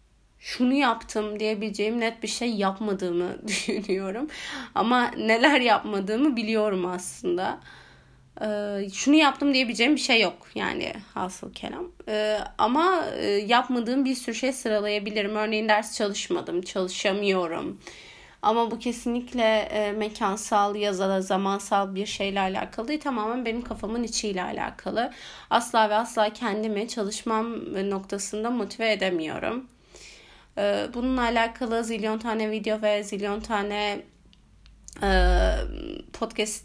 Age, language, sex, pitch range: 30-49, Turkish, female, 200-235 Hz